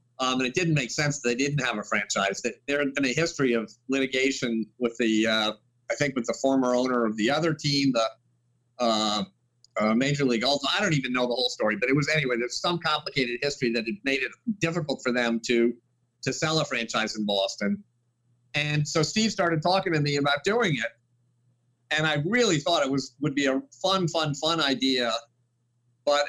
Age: 50-69